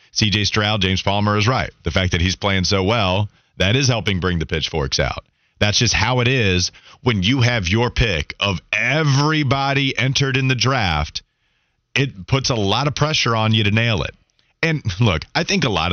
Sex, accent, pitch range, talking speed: male, American, 95-130 Hz, 200 wpm